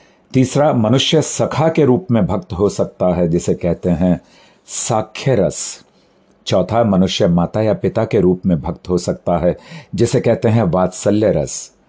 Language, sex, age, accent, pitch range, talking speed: Hindi, male, 50-69, native, 85-115 Hz, 150 wpm